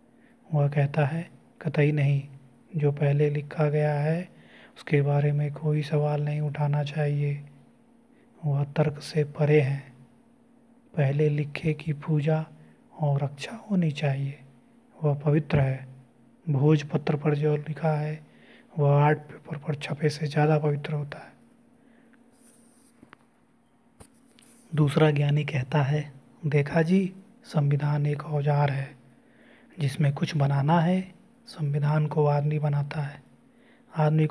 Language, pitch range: Hindi, 145-185 Hz